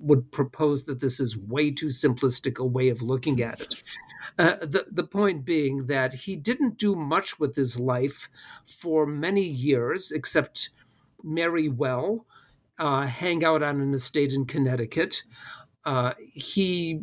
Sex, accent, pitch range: male, American, 135-170 Hz